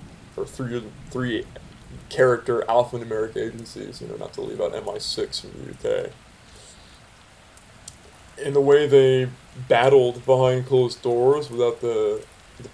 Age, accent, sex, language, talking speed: 20-39, American, male, English, 140 wpm